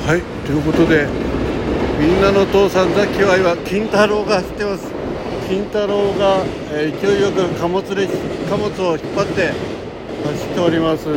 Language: Japanese